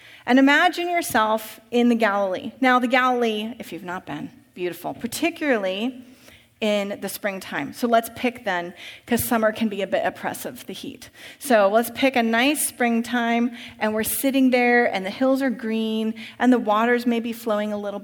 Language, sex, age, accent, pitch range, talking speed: English, female, 30-49, American, 220-265 Hz, 180 wpm